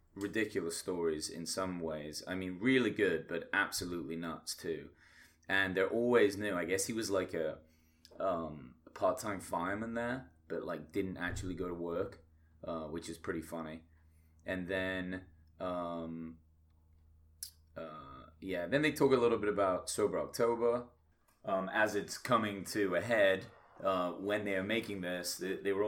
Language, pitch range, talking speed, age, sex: English, 80-105 Hz, 165 wpm, 30-49, male